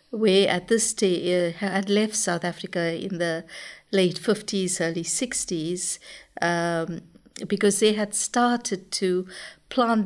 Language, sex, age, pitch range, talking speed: English, female, 60-79, 175-205 Hz, 130 wpm